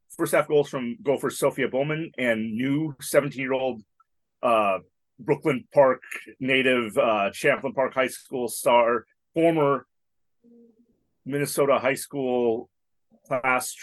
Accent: American